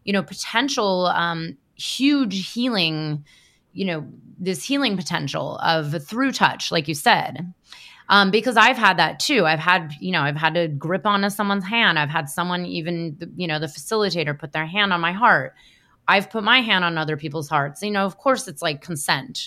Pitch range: 165-215 Hz